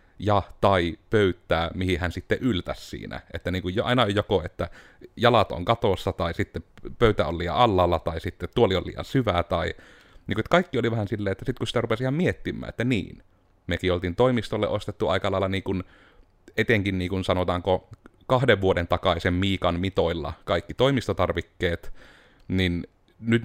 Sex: male